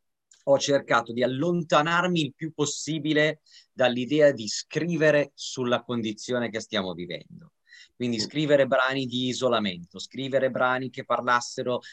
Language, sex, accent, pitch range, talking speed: Italian, male, native, 110-145 Hz, 120 wpm